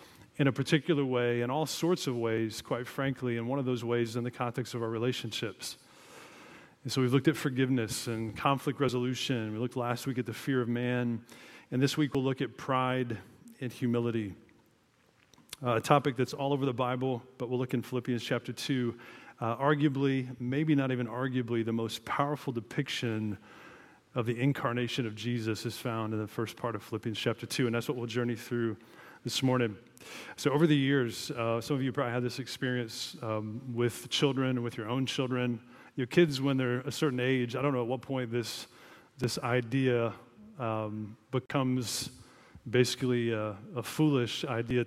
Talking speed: 185 wpm